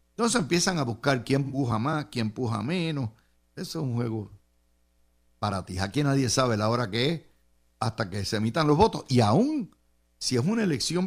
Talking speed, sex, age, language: 190 wpm, male, 60-79, Spanish